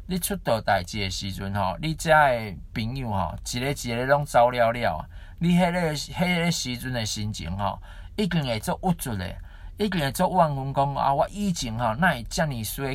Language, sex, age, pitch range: Chinese, male, 50-69, 95-155 Hz